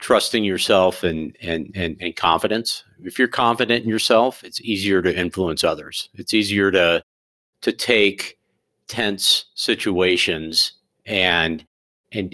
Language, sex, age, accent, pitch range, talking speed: English, male, 50-69, American, 85-105 Hz, 125 wpm